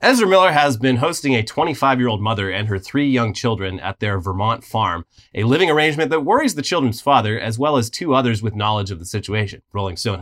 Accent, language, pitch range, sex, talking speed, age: American, English, 110-145 Hz, male, 215 wpm, 30-49